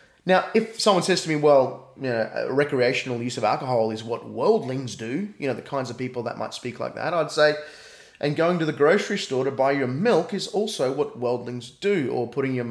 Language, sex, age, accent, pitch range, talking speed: English, male, 20-39, Australian, 130-185 Hz, 225 wpm